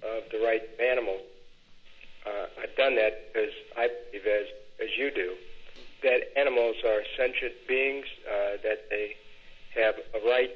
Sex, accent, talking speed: male, American, 155 wpm